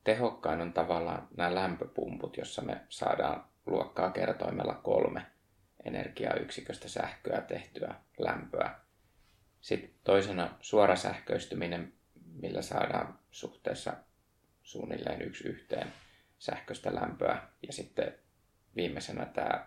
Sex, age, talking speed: male, 30-49, 95 wpm